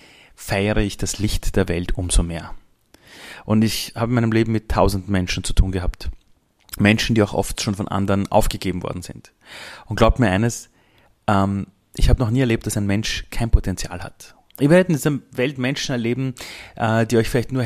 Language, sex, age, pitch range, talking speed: German, male, 30-49, 100-125 Hz, 190 wpm